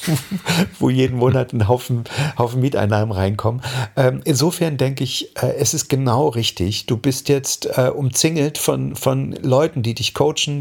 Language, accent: German, German